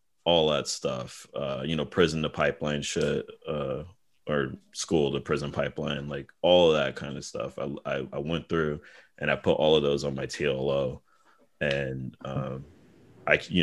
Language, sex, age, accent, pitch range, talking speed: English, male, 30-49, American, 70-80 Hz, 180 wpm